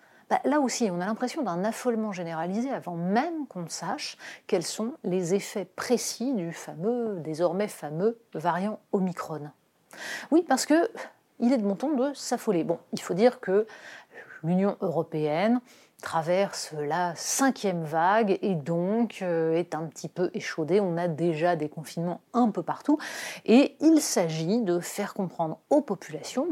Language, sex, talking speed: French, female, 155 wpm